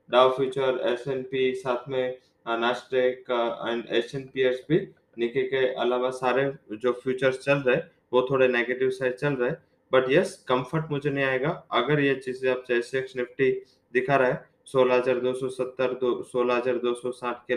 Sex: male